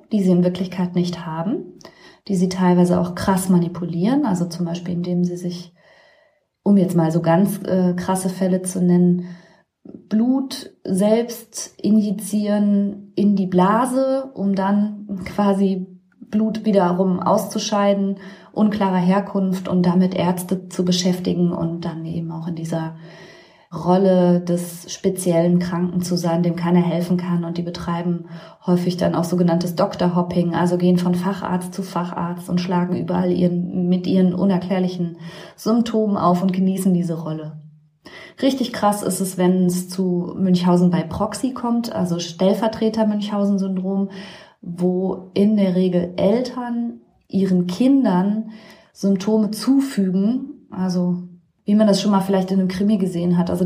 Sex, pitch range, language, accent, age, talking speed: female, 175-200 Hz, German, German, 20-39, 140 wpm